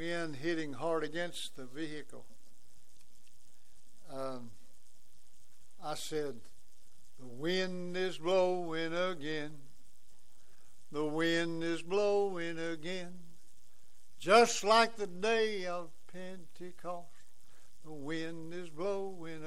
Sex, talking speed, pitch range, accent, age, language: male, 85 wpm, 150-185 Hz, American, 60-79, English